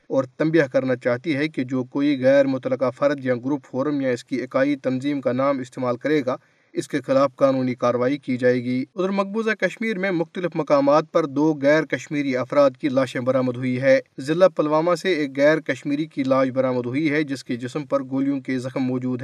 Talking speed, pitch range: 210 wpm, 130-170 Hz